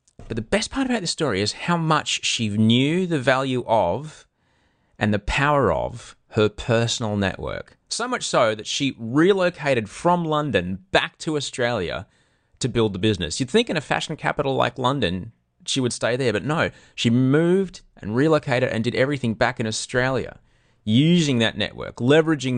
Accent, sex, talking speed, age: Australian, male, 175 wpm, 30-49